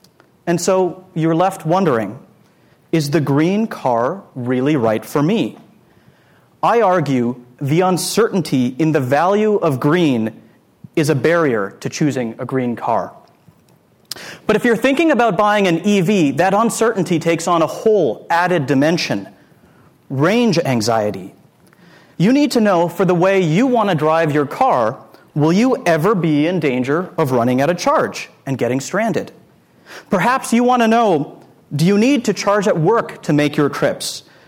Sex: male